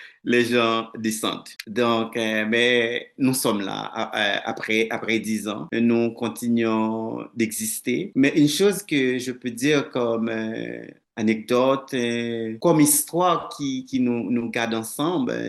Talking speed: 130 wpm